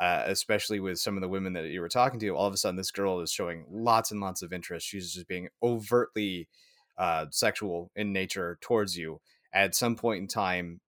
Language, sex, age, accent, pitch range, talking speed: English, male, 30-49, American, 95-110 Hz, 220 wpm